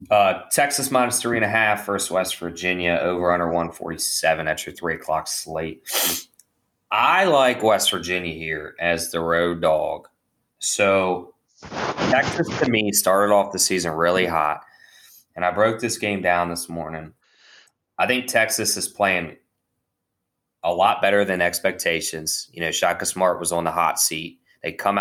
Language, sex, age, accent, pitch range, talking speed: English, male, 20-39, American, 85-100 Hz, 160 wpm